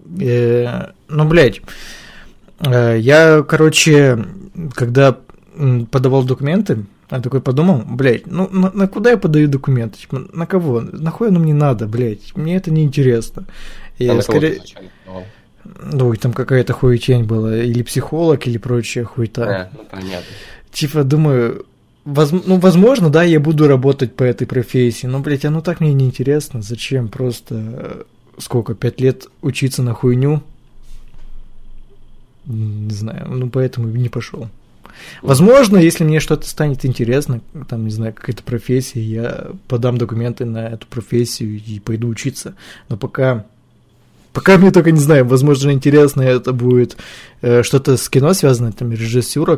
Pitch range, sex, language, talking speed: 120-150 Hz, male, Russian, 135 wpm